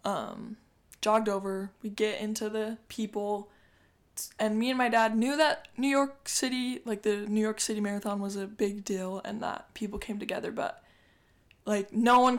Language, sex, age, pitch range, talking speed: English, female, 10-29, 205-225 Hz, 180 wpm